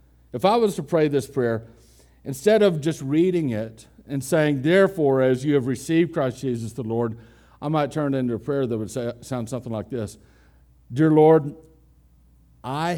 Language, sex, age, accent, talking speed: English, male, 60-79, American, 180 wpm